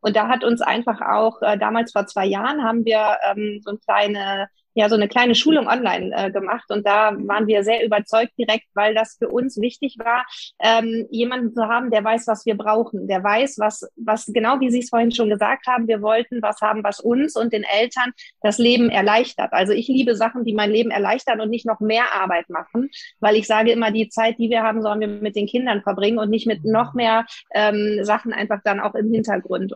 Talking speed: 225 wpm